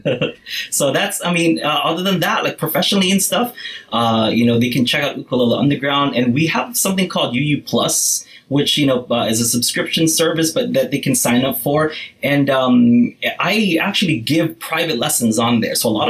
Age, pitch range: 20-39, 115-160 Hz